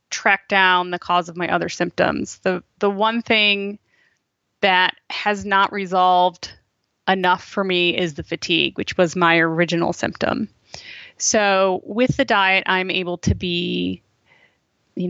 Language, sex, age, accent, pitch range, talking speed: English, female, 20-39, American, 175-200 Hz, 145 wpm